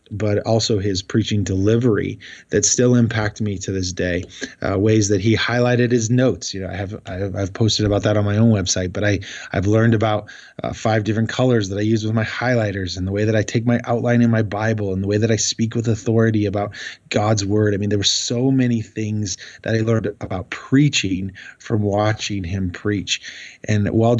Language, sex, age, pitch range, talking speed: English, male, 20-39, 100-115 Hz, 220 wpm